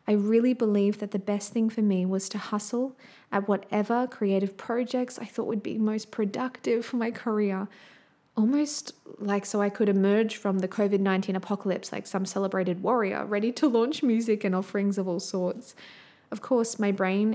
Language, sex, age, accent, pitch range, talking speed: English, female, 20-39, Australian, 195-225 Hz, 180 wpm